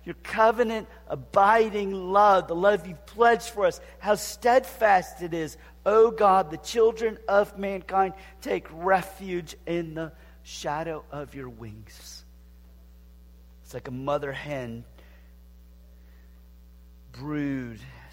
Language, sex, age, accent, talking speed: English, male, 40-59, American, 115 wpm